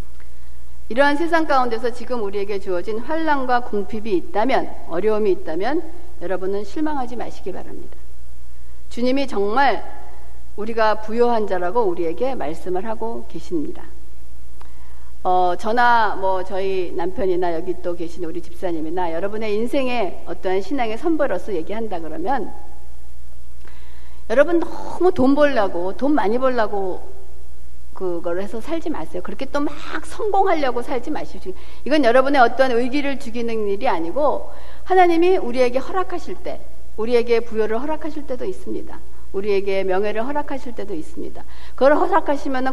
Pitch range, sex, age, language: 180-290 Hz, female, 60-79, Korean